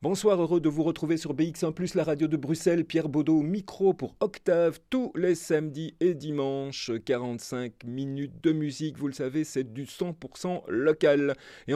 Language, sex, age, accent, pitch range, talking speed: French, male, 40-59, French, 115-170 Hz, 170 wpm